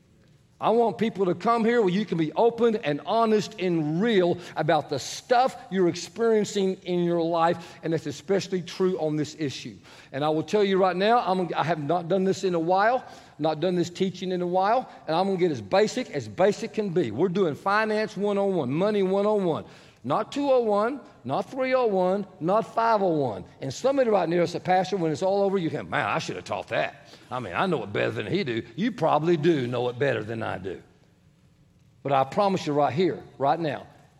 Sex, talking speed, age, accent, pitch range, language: male, 210 wpm, 50-69, American, 150-205 Hz, English